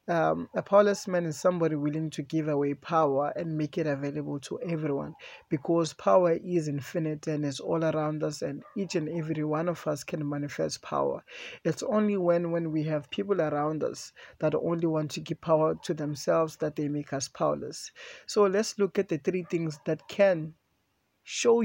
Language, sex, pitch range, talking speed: English, male, 150-185 Hz, 190 wpm